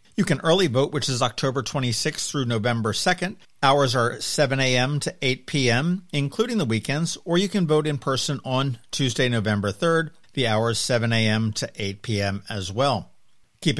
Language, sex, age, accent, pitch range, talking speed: English, male, 50-69, American, 110-140 Hz, 180 wpm